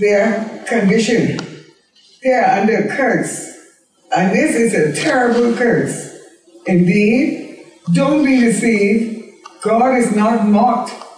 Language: English